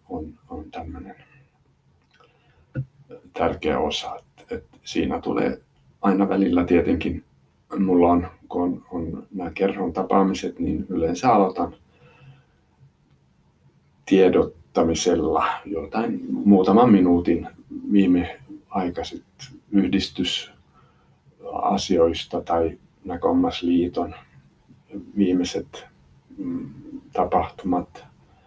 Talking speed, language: 65 wpm, Finnish